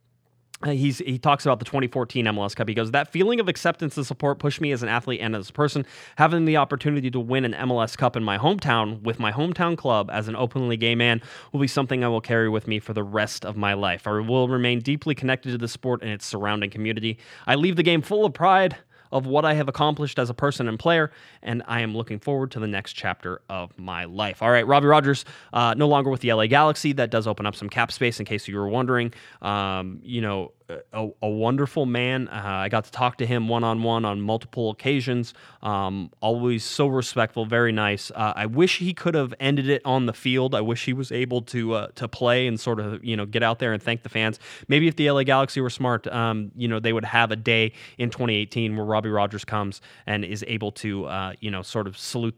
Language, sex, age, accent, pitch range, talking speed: English, male, 20-39, American, 110-130 Hz, 240 wpm